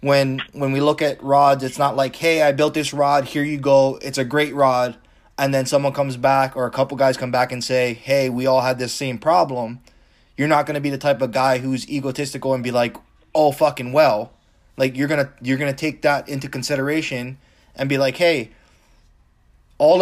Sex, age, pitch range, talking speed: male, 20-39, 125-145 Hz, 215 wpm